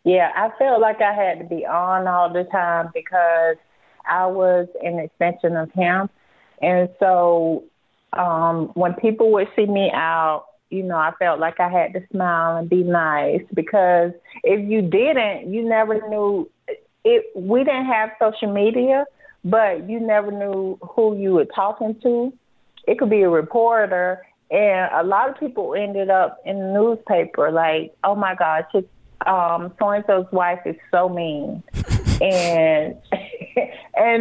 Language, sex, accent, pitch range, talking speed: English, female, American, 170-215 Hz, 160 wpm